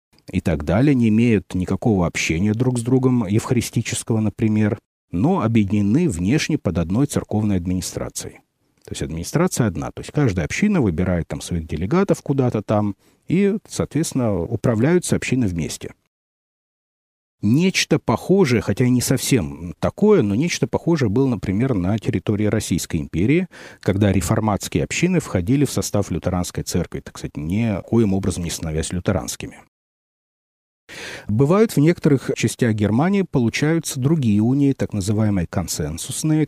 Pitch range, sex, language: 95-140 Hz, male, Russian